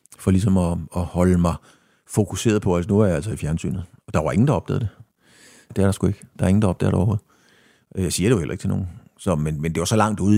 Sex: male